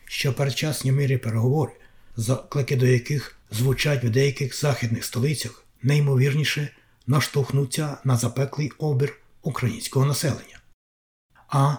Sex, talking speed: male, 105 wpm